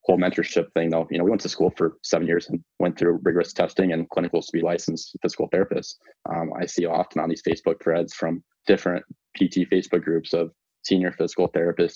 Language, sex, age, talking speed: English, male, 20-39, 210 wpm